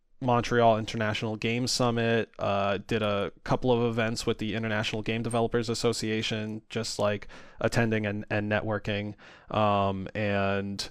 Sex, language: male, English